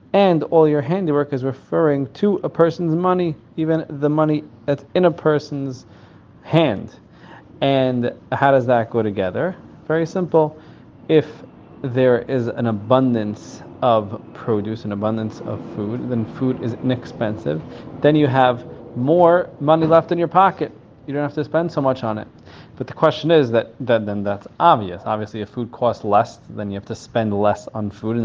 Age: 30-49